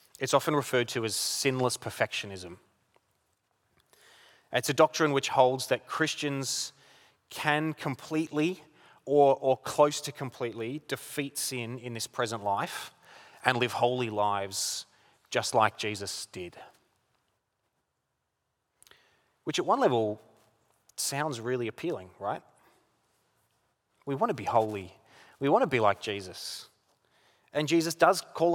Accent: Australian